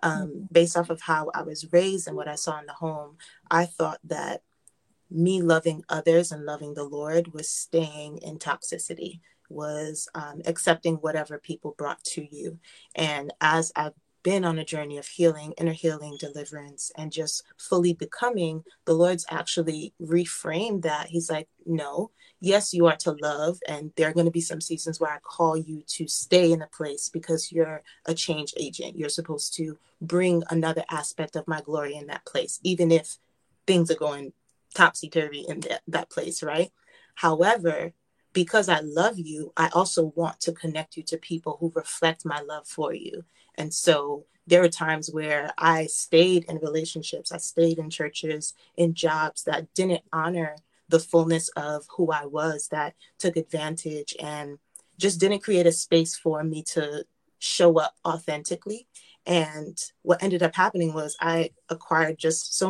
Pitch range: 155-170 Hz